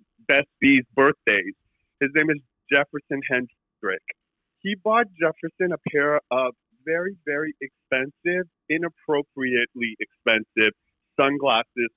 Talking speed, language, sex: 95 wpm, English, male